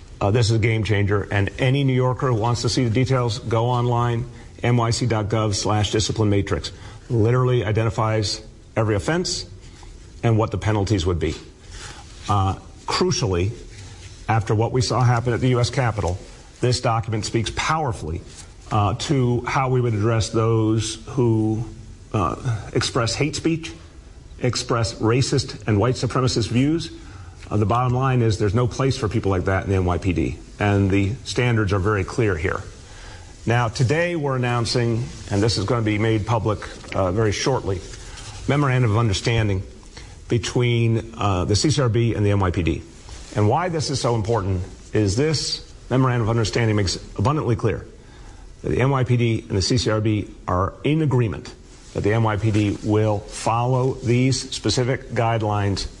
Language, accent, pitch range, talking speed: English, American, 100-125 Hz, 150 wpm